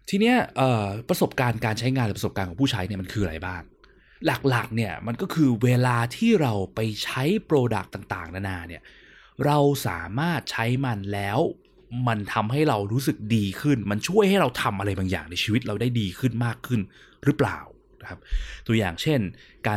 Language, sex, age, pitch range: Thai, male, 20-39, 95-125 Hz